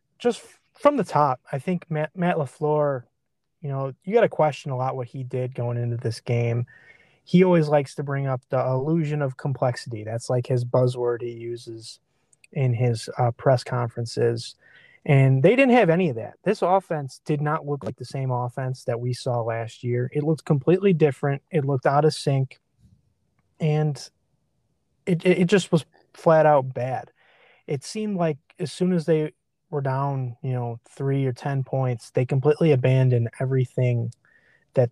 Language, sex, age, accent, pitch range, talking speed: English, male, 20-39, American, 125-155 Hz, 175 wpm